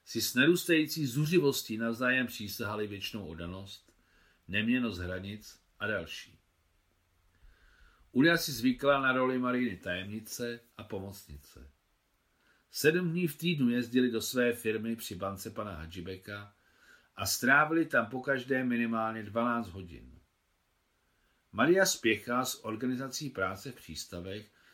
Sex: male